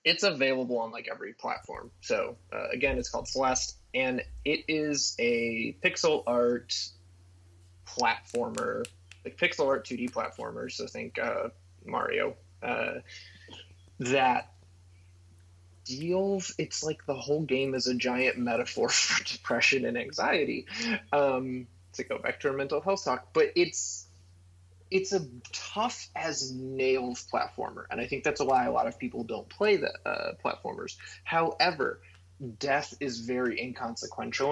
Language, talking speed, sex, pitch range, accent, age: English, 135 wpm, male, 90-140 Hz, American, 20-39